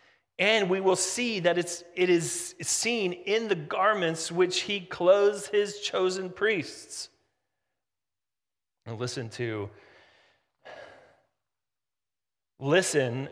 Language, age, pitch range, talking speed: English, 30-49, 130-170 Hz, 100 wpm